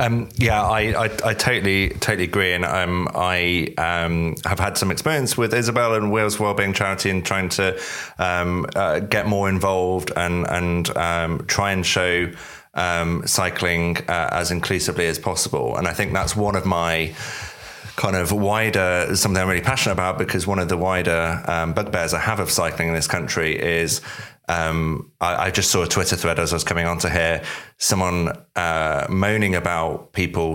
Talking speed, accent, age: 185 wpm, British, 30-49